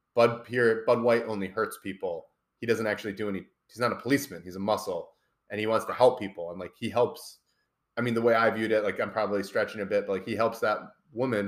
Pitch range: 100-125 Hz